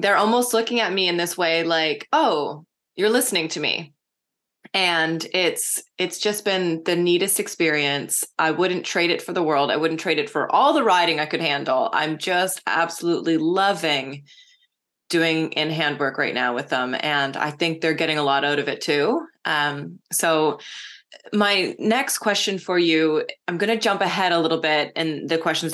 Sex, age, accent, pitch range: female, 20-39, American, 155-185 Hz